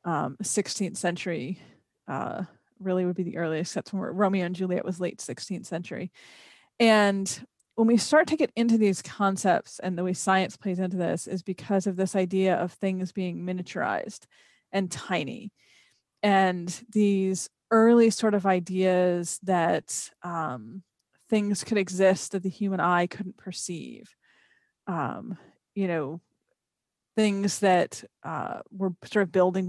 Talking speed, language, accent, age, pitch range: 145 wpm, English, American, 30-49, 180-205 Hz